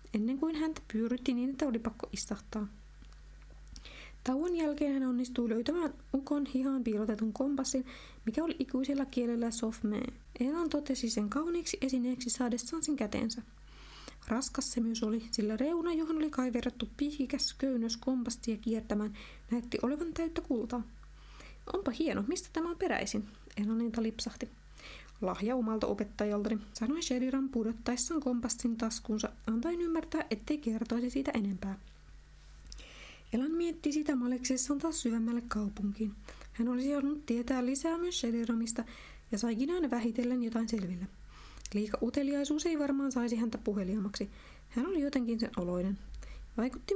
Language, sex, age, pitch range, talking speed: Finnish, female, 20-39, 225-275 Hz, 135 wpm